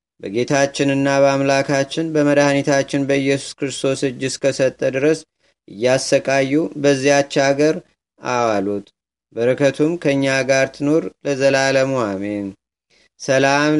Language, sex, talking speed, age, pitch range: Amharic, male, 75 wpm, 30-49, 130-145 Hz